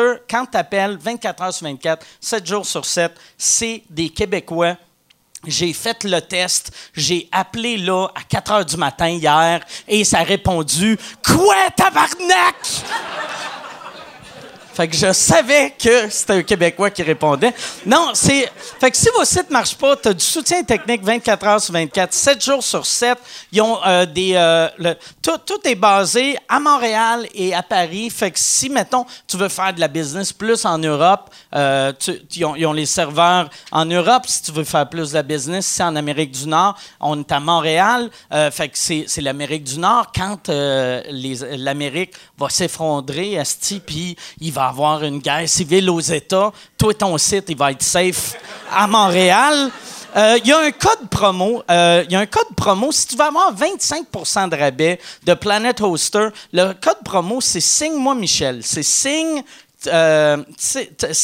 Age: 40-59